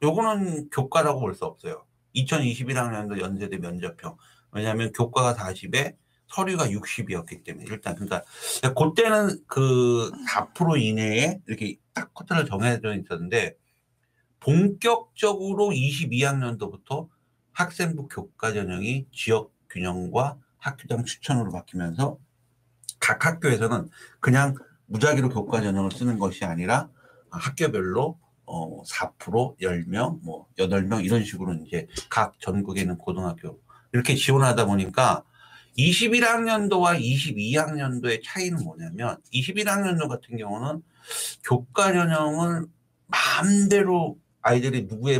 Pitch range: 110-155 Hz